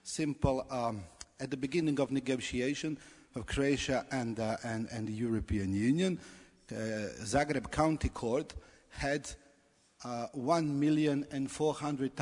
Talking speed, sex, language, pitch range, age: 110 wpm, male, English, 115-140 Hz, 50-69